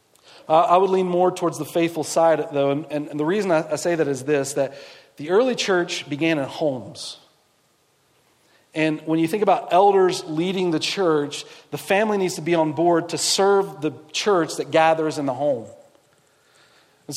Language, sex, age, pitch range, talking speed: English, male, 40-59, 165-200 Hz, 180 wpm